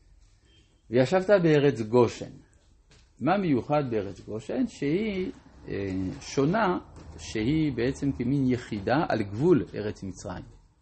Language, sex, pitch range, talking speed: Hebrew, male, 100-150 Hz, 95 wpm